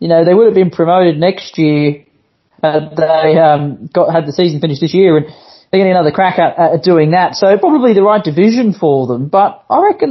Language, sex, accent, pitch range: English, male, Australian, 145-175 Hz